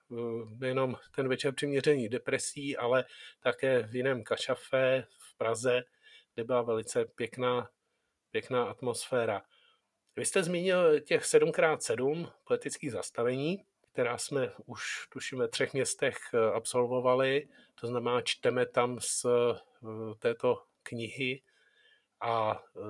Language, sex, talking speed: Czech, male, 105 wpm